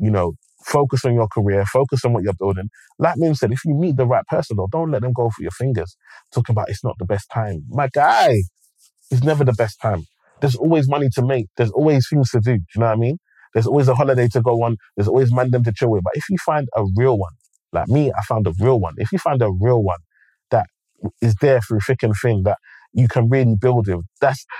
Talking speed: 255 wpm